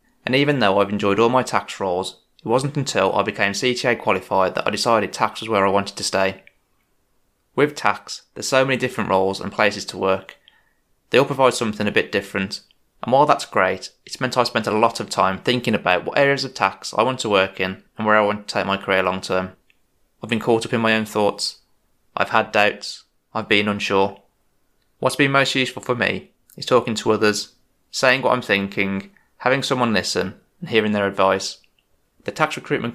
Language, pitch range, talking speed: English, 100-125 Hz, 210 wpm